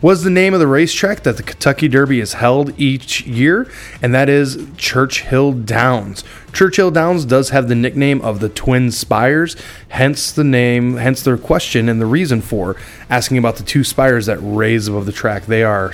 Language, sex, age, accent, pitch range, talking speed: English, male, 20-39, American, 115-150 Hz, 190 wpm